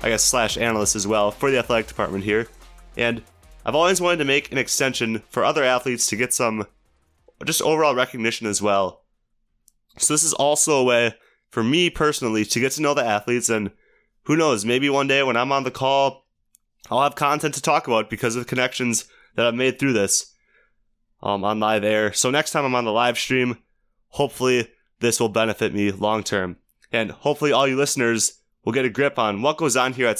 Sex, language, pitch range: male, English, 110-140 Hz